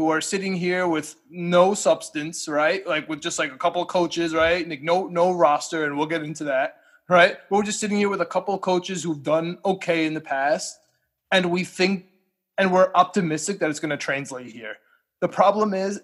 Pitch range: 155-190 Hz